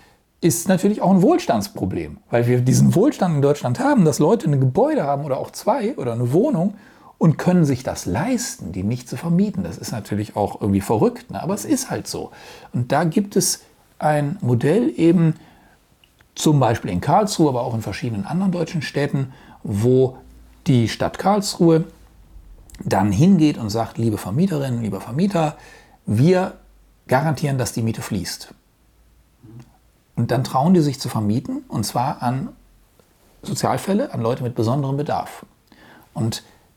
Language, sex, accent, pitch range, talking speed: German, male, German, 115-170 Hz, 155 wpm